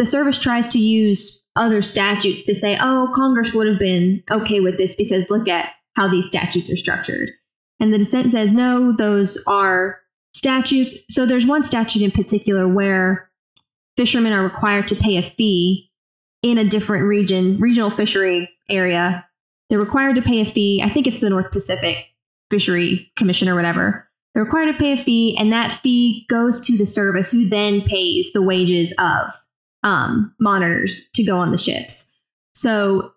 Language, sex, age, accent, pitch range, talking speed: English, female, 10-29, American, 190-230 Hz, 175 wpm